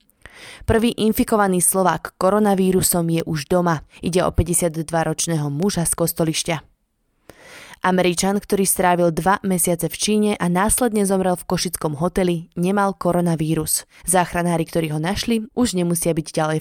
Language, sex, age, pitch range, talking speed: Slovak, female, 20-39, 170-200 Hz, 130 wpm